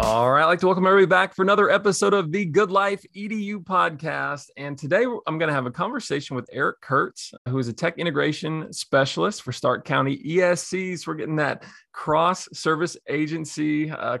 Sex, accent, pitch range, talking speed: male, American, 120-165 Hz, 195 wpm